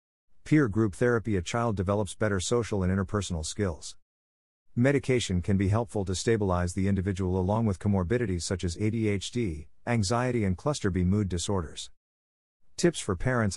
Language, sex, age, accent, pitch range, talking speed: English, male, 50-69, American, 85-115 Hz, 150 wpm